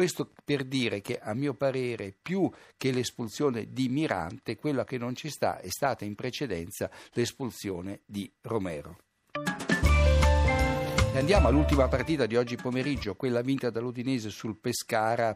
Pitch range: 110-135 Hz